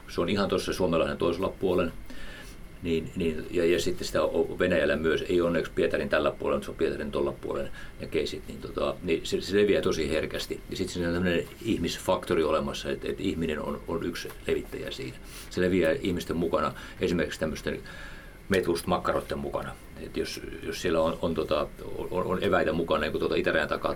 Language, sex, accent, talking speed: Finnish, male, native, 185 wpm